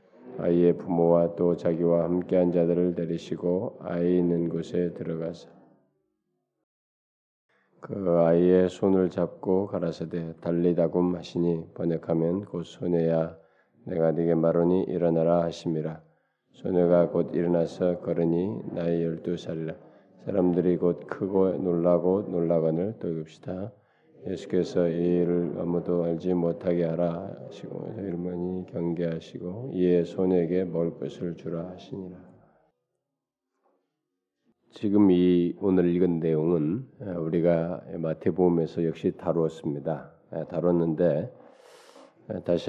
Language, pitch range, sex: Korean, 80-90 Hz, male